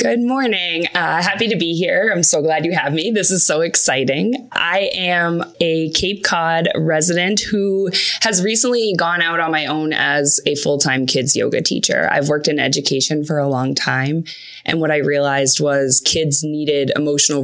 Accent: American